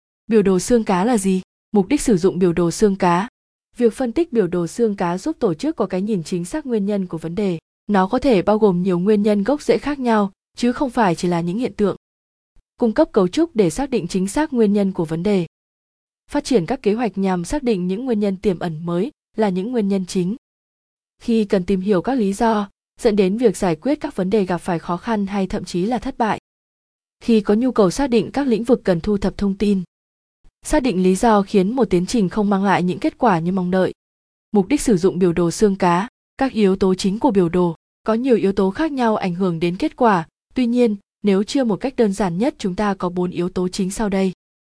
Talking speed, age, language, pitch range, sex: 250 wpm, 20-39, Vietnamese, 185-235 Hz, female